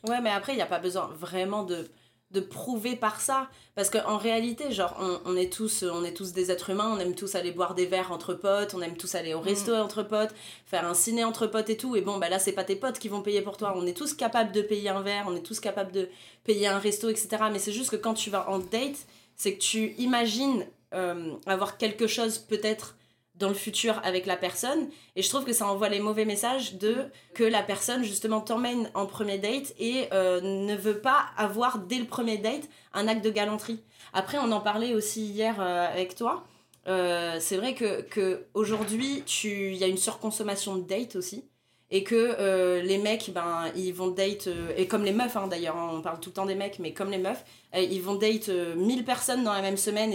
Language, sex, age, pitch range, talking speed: French, female, 20-39, 185-220 Hz, 235 wpm